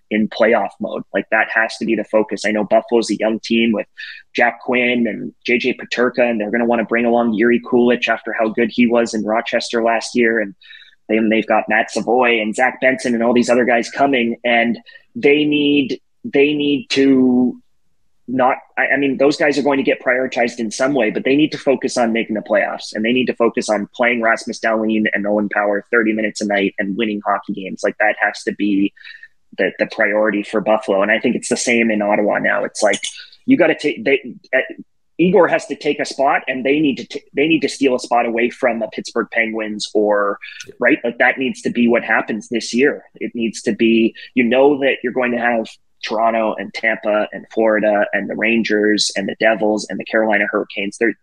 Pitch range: 110-125 Hz